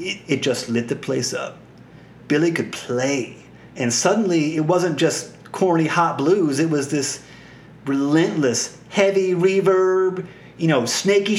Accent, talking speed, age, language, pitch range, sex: American, 140 wpm, 30-49, English, 145-185 Hz, male